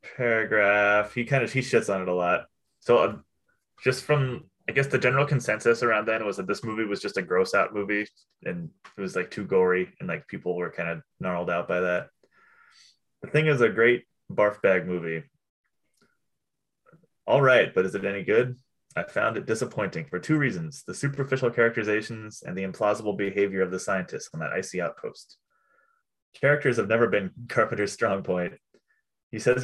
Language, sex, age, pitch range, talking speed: English, male, 20-39, 95-125 Hz, 185 wpm